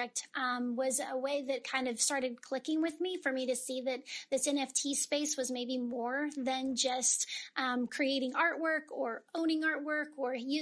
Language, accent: English, American